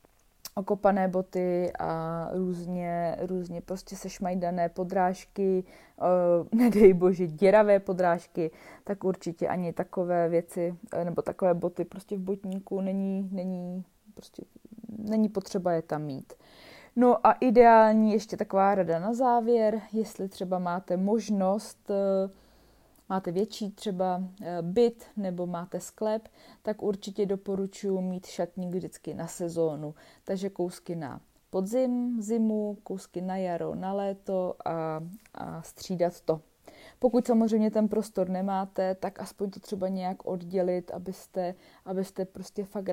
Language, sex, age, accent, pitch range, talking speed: Czech, female, 20-39, native, 175-210 Hz, 125 wpm